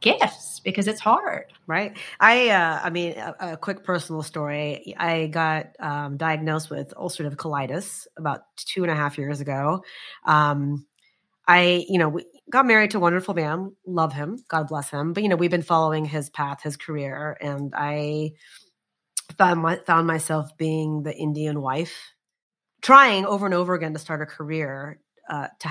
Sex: female